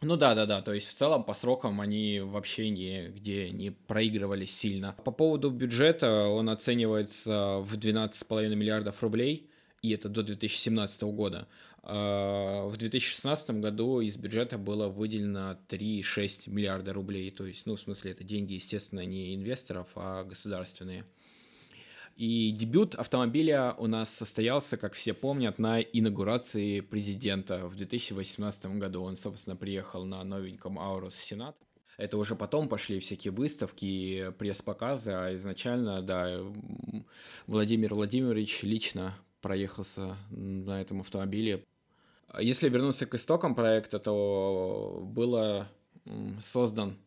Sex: male